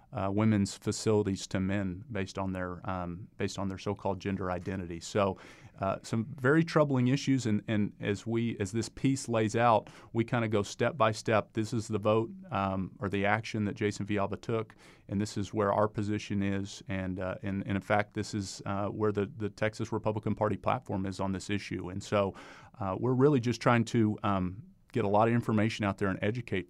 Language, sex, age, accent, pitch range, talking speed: English, male, 30-49, American, 100-115 Hz, 210 wpm